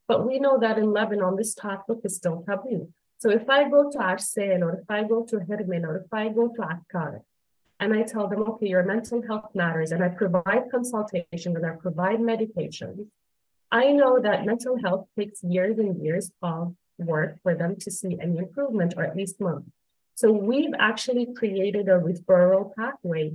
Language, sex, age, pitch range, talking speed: English, female, 30-49, 185-230 Hz, 190 wpm